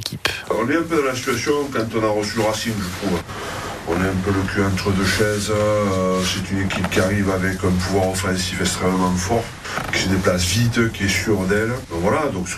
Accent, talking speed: French, 225 wpm